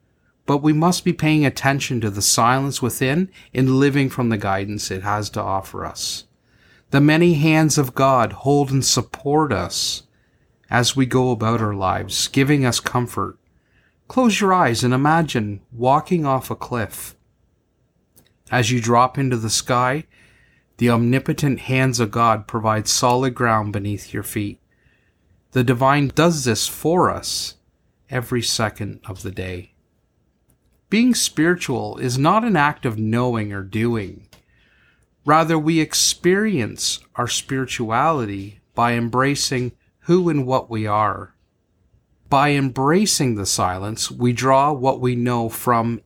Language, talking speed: English, 140 wpm